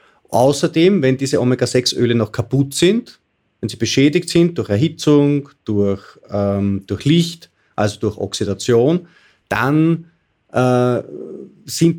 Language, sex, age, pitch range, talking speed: German, male, 30-49, 105-135 Hz, 115 wpm